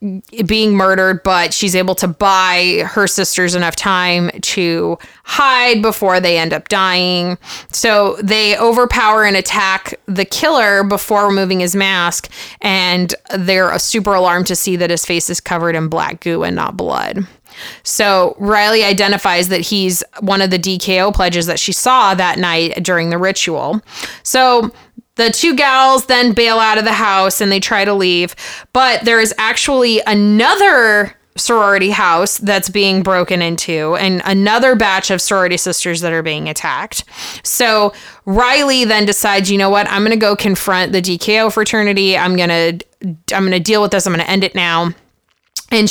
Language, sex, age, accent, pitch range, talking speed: English, female, 20-39, American, 180-215 Hz, 175 wpm